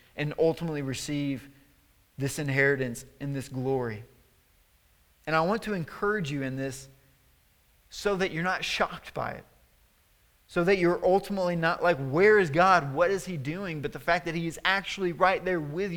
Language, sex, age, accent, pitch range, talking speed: English, male, 30-49, American, 135-180 Hz, 175 wpm